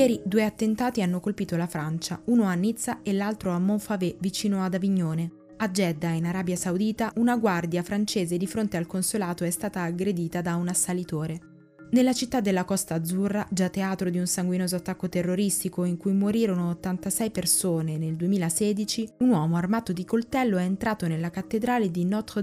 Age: 20-39